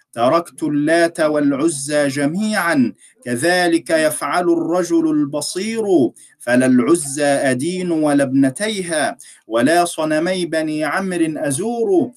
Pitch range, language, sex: 155-205 Hz, Arabic, male